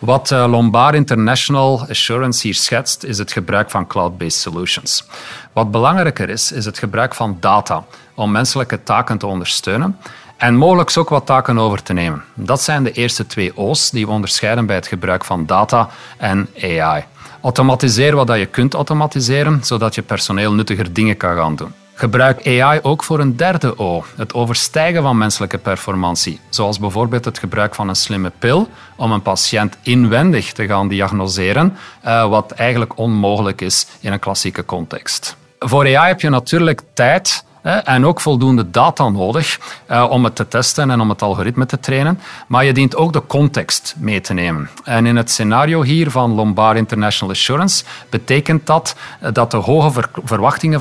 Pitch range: 100-135 Hz